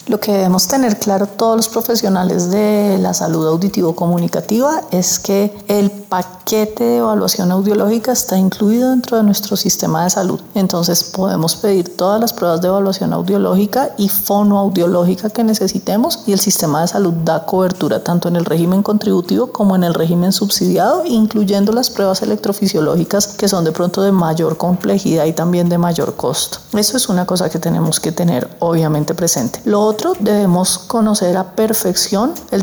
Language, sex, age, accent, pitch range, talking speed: Spanish, female, 40-59, Colombian, 175-205 Hz, 165 wpm